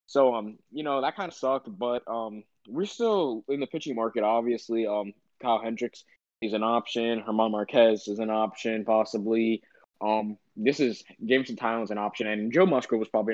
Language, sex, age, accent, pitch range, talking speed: English, male, 20-39, American, 105-120 Hz, 185 wpm